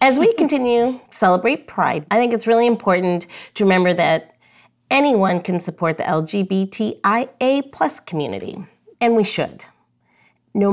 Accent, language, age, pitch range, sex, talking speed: American, English, 40-59, 160-205 Hz, female, 135 wpm